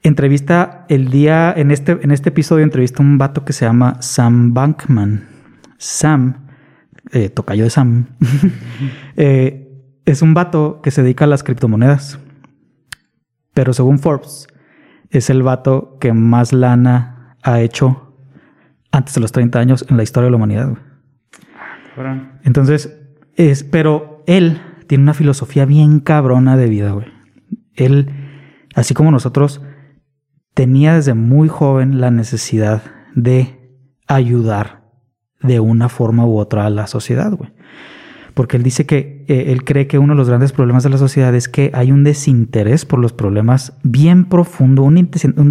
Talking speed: 155 wpm